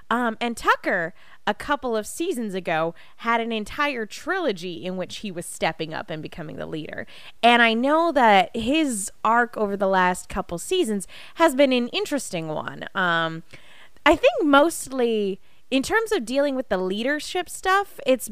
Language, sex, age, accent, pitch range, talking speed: English, female, 20-39, American, 185-245 Hz, 165 wpm